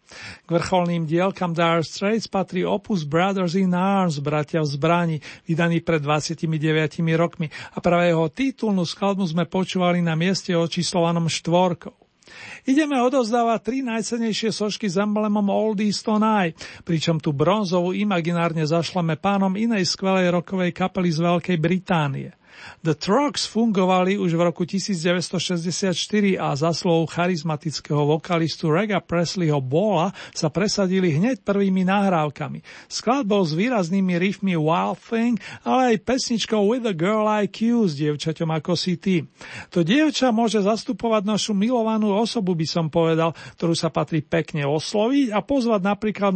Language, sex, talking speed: Slovak, male, 140 wpm